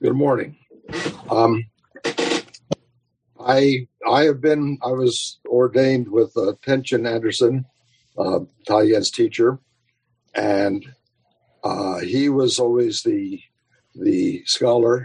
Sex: male